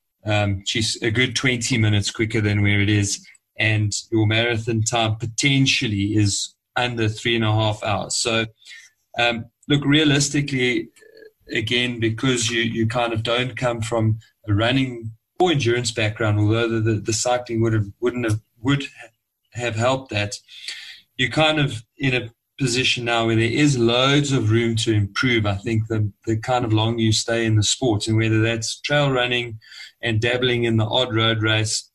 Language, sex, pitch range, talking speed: English, male, 110-125 Hz, 175 wpm